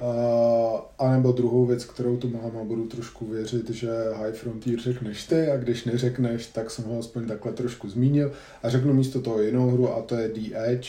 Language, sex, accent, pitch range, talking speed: Czech, male, native, 110-125 Hz, 205 wpm